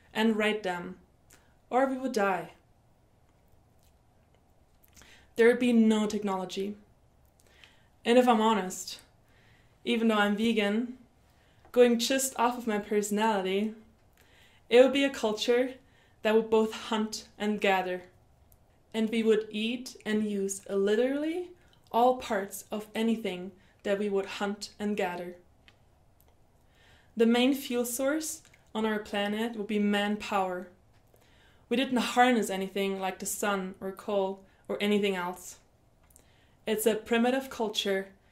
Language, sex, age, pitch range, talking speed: English, female, 20-39, 195-230 Hz, 125 wpm